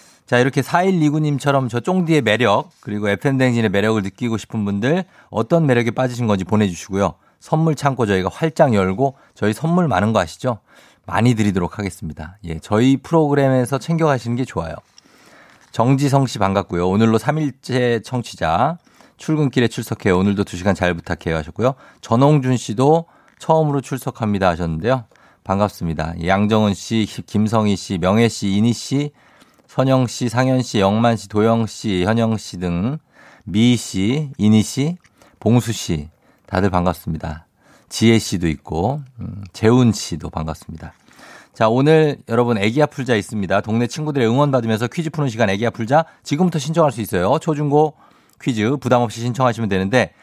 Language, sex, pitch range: Korean, male, 100-140 Hz